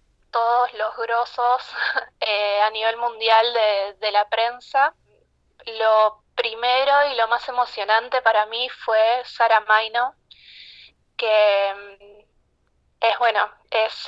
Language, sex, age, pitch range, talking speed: Spanish, female, 20-39, 220-245 Hz, 110 wpm